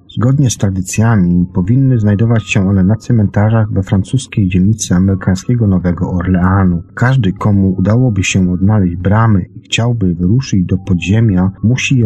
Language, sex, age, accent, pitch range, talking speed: Polish, male, 40-59, native, 95-120 Hz, 140 wpm